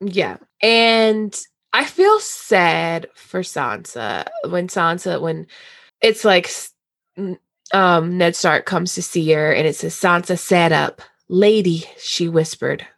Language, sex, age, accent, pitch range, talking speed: English, female, 20-39, American, 165-200 Hz, 130 wpm